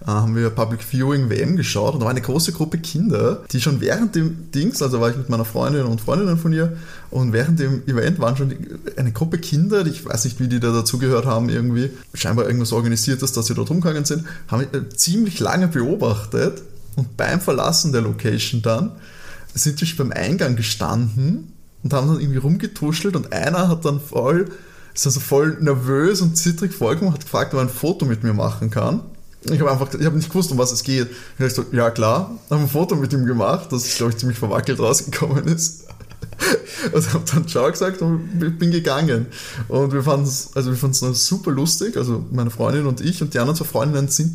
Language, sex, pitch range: German, male, 125-165 Hz